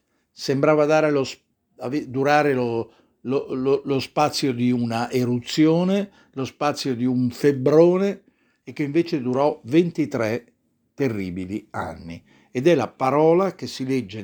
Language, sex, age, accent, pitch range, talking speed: Italian, male, 60-79, native, 115-160 Hz, 115 wpm